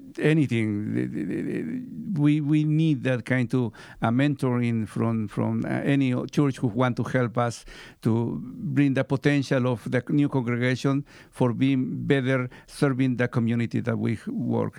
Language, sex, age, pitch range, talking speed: English, male, 60-79, 125-145 Hz, 145 wpm